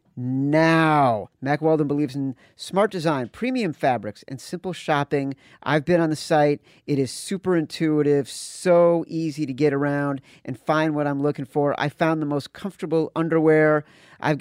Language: English